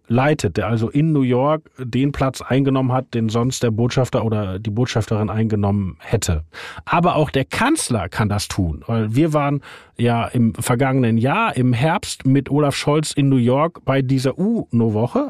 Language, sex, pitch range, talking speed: German, male, 120-155 Hz, 175 wpm